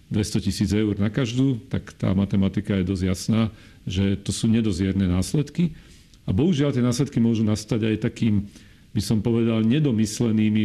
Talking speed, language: 160 wpm, Slovak